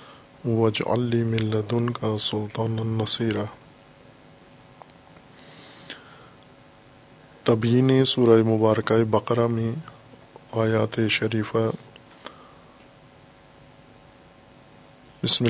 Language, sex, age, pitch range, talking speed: Urdu, male, 20-39, 110-120 Hz, 55 wpm